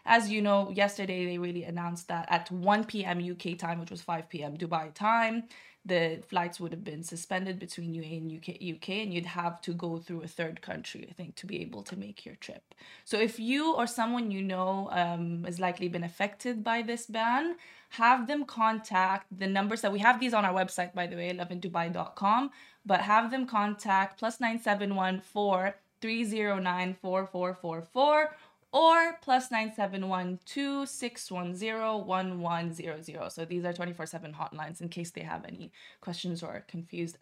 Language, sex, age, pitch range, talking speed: Arabic, female, 20-39, 175-225 Hz, 165 wpm